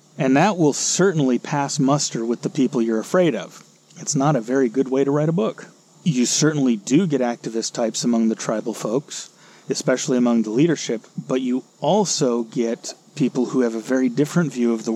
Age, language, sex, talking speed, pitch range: 30-49, English, male, 195 wpm, 120-165 Hz